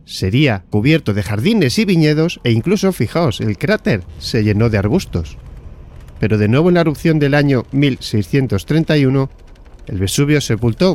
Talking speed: 150 wpm